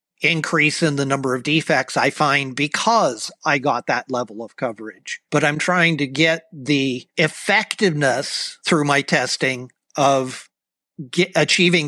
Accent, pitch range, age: American, 135-165 Hz, 50-69